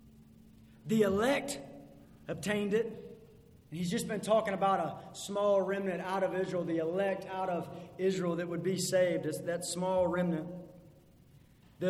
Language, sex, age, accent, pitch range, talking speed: English, male, 30-49, American, 185-245 Hz, 145 wpm